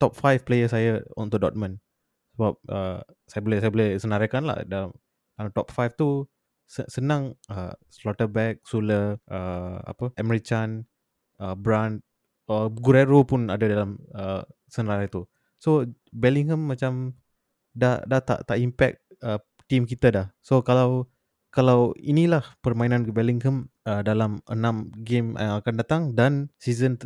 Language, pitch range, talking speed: Malay, 105-125 Hz, 140 wpm